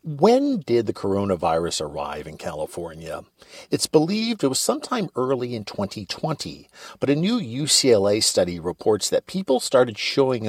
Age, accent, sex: 50-69, American, male